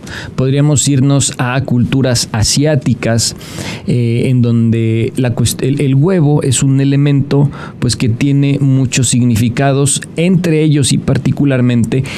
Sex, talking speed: male, 120 wpm